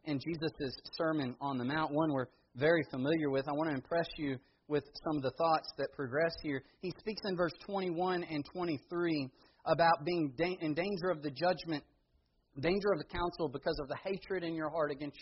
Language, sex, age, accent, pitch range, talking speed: English, male, 40-59, American, 140-195 Hz, 195 wpm